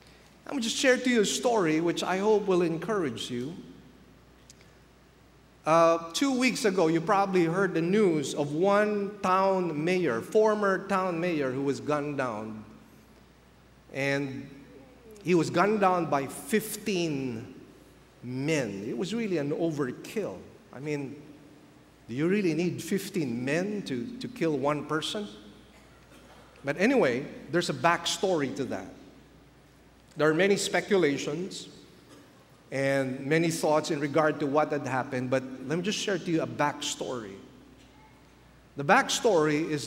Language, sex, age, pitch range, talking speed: English, male, 50-69, 145-185 Hz, 140 wpm